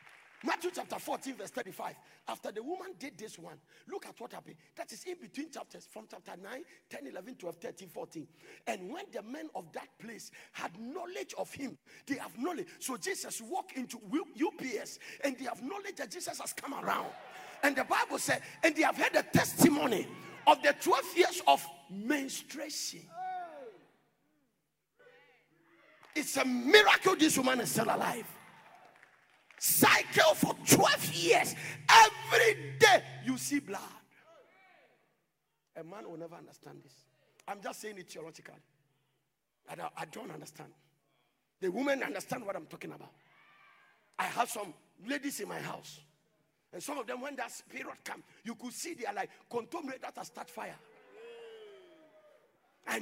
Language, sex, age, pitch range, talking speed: English, male, 50-69, 225-360 Hz, 155 wpm